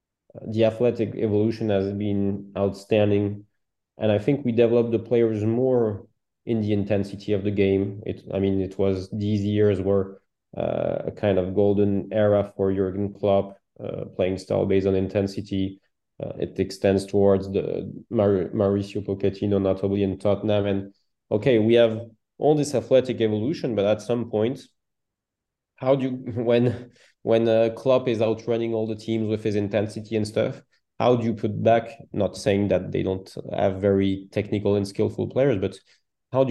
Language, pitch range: English, 100-115 Hz